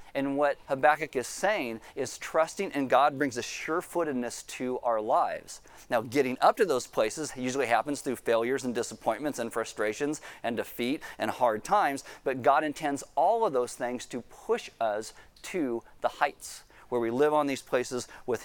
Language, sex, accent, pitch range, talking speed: English, male, American, 130-155 Hz, 175 wpm